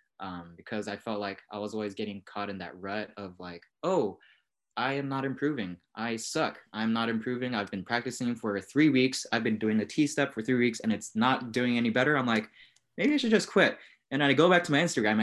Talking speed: 235 wpm